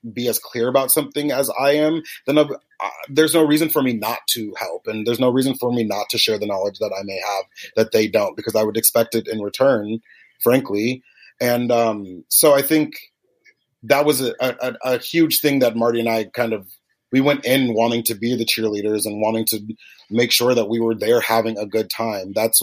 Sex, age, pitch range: male, 30-49, 110-130 Hz